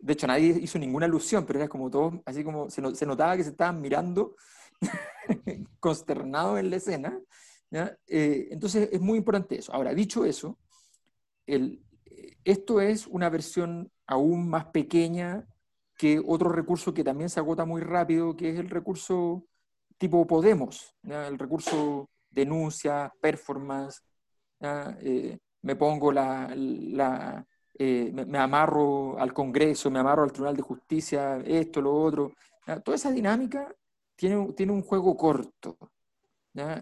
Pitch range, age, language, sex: 145-200 Hz, 40-59, Spanish, male